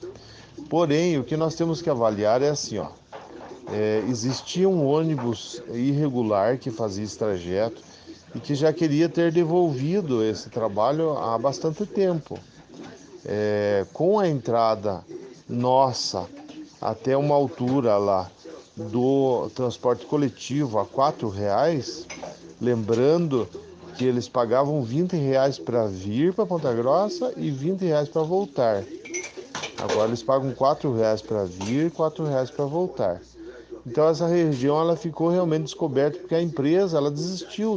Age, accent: 40-59, Brazilian